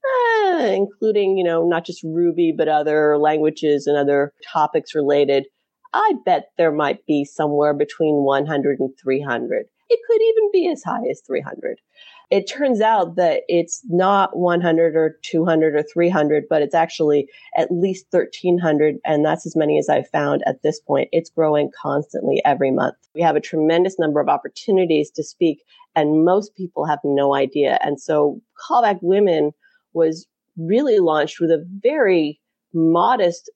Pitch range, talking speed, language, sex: 155-215 Hz, 160 wpm, English, female